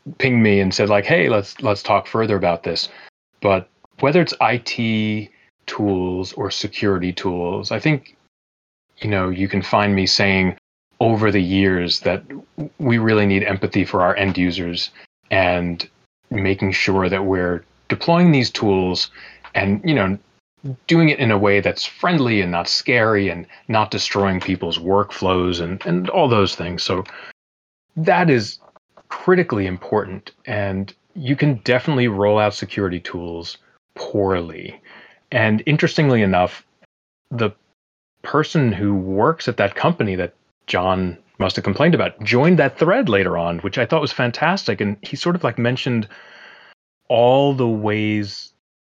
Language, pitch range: English, 95-120 Hz